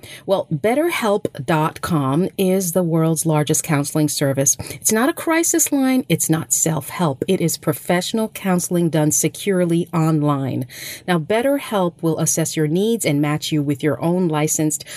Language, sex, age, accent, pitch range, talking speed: English, female, 40-59, American, 150-195 Hz, 145 wpm